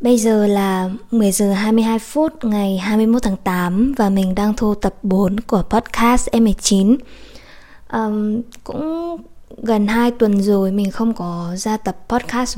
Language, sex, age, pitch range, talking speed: Vietnamese, female, 20-39, 190-225 Hz, 155 wpm